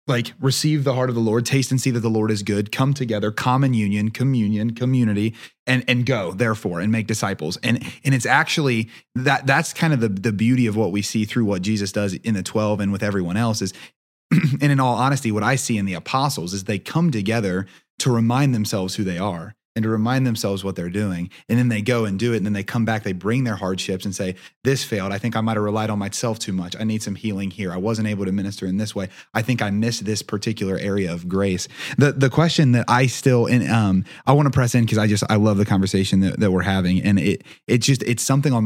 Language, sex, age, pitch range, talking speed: English, male, 30-49, 100-125 Hz, 255 wpm